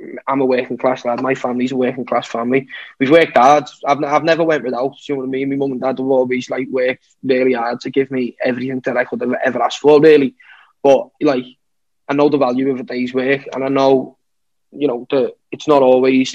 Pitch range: 130-145 Hz